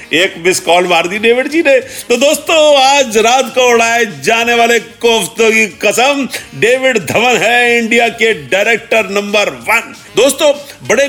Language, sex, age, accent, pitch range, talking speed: Hindi, male, 50-69, native, 190-260 Hz, 130 wpm